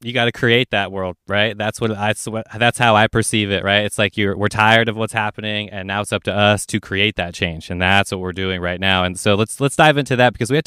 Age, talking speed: 20-39, 285 wpm